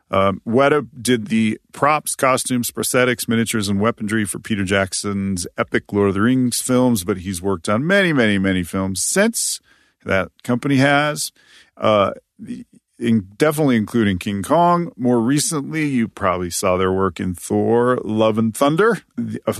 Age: 40-59